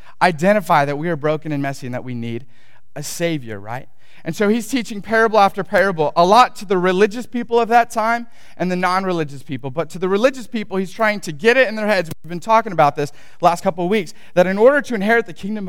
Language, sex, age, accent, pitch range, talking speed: English, male, 30-49, American, 175-235 Hz, 245 wpm